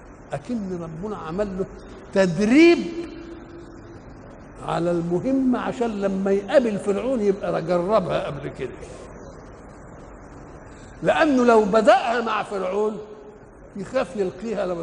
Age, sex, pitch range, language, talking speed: 60-79, male, 190-245 Hz, Arabic, 90 wpm